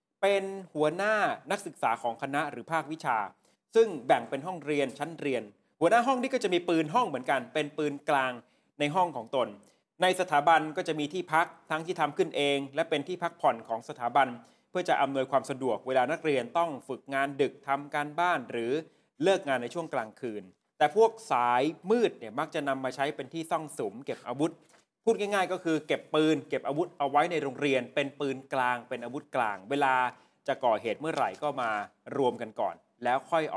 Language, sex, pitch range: Thai, male, 135-170 Hz